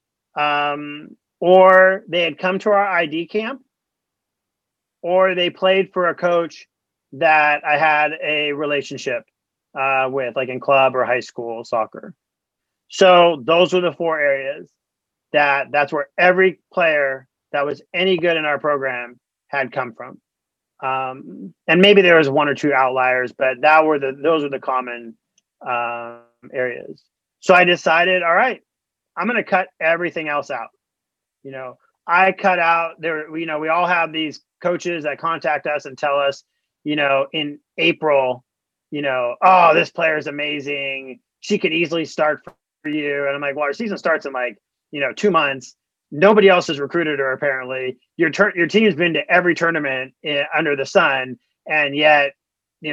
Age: 30-49